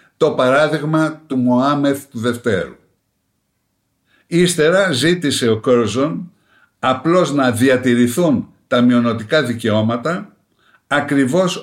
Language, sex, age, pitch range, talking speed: Greek, male, 60-79, 115-155 Hz, 90 wpm